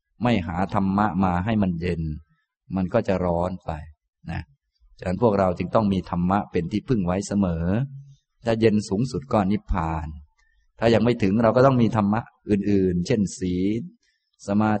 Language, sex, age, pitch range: Thai, male, 20-39, 90-115 Hz